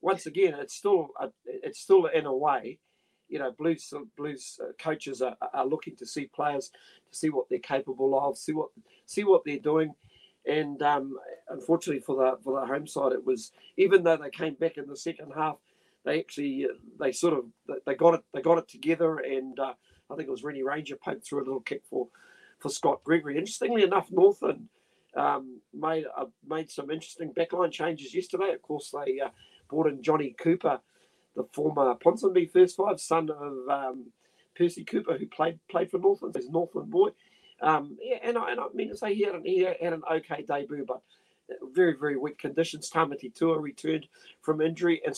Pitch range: 145-205 Hz